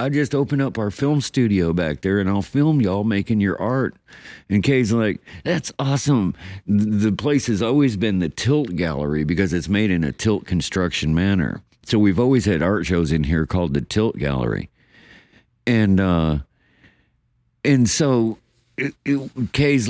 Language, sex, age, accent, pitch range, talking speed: English, male, 50-69, American, 90-130 Hz, 170 wpm